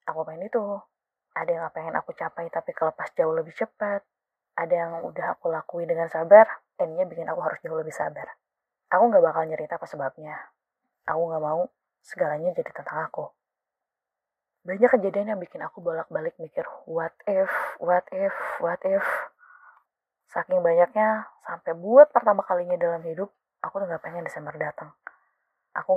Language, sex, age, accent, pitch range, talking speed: Indonesian, female, 20-39, native, 170-255 Hz, 160 wpm